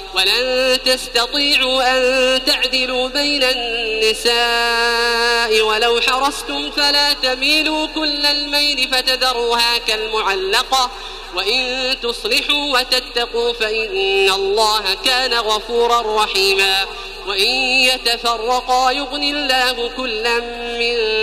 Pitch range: 235-285 Hz